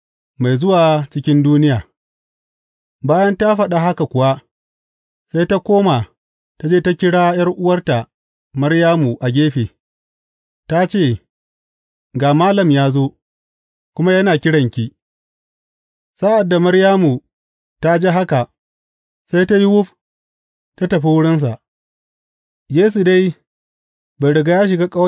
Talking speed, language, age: 80 wpm, English, 40-59